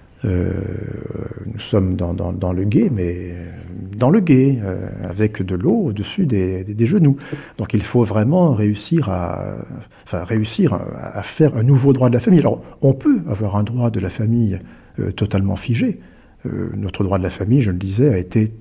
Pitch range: 95-125 Hz